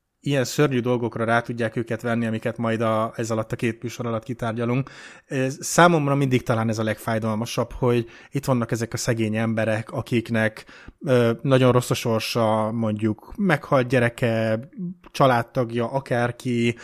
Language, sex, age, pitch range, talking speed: Hungarian, male, 20-39, 115-130 Hz, 140 wpm